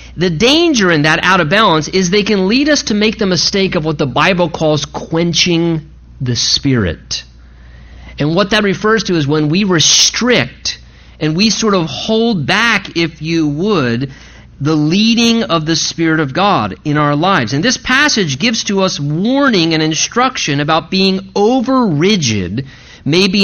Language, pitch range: English, 150-205 Hz